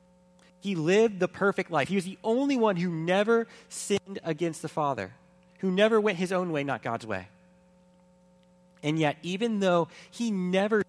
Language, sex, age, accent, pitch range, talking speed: English, male, 30-49, American, 155-180 Hz, 170 wpm